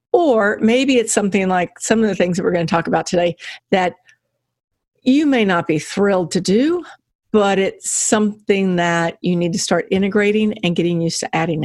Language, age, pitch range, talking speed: English, 50-69, 175-235 Hz, 195 wpm